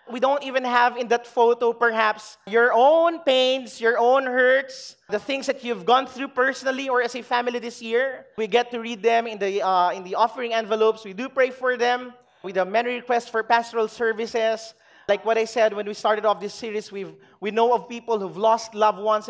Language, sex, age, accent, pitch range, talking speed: English, male, 20-39, Filipino, 190-235 Hz, 220 wpm